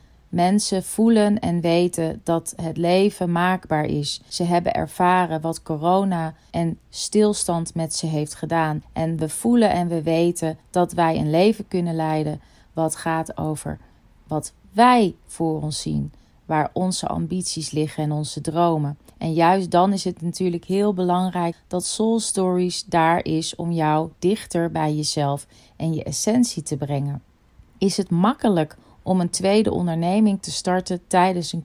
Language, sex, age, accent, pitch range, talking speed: Dutch, female, 30-49, Dutch, 155-190 Hz, 155 wpm